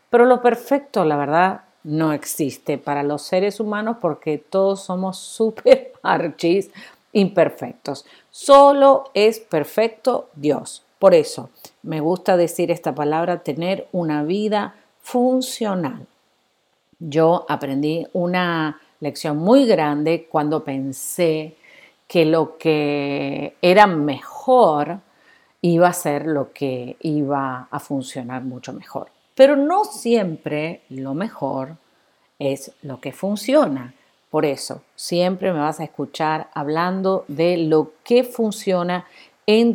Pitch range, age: 150-205 Hz, 50-69